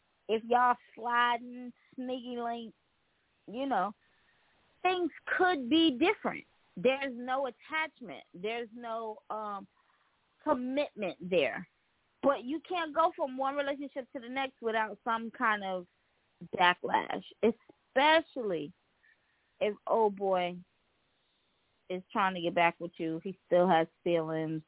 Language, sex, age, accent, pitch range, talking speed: English, female, 20-39, American, 185-270 Hz, 120 wpm